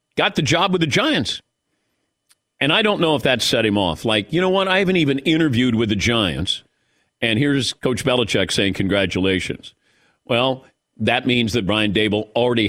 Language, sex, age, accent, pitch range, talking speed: English, male, 50-69, American, 115-160 Hz, 185 wpm